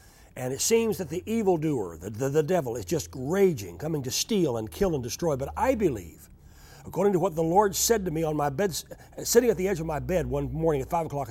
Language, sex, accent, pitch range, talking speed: English, male, American, 155-225 Hz, 250 wpm